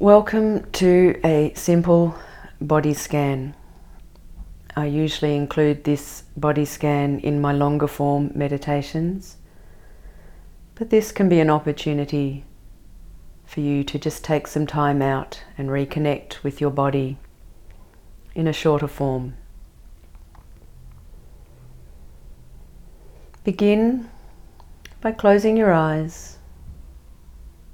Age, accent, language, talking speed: 40-59, Australian, English, 95 wpm